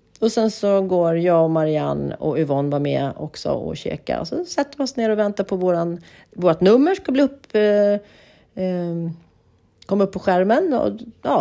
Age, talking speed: 40-59, 195 wpm